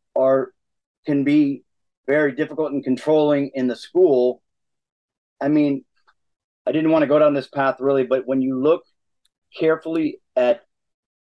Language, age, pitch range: English, 40-59, 125-160 Hz